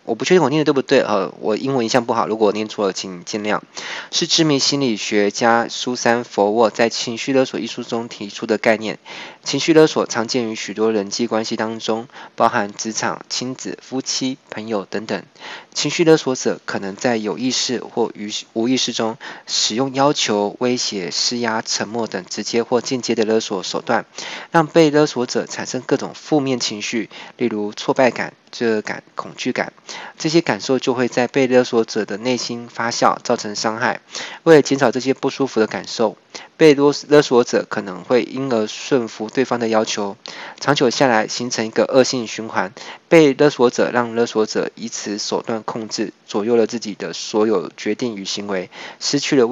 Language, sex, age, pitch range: Chinese, male, 20-39, 110-130 Hz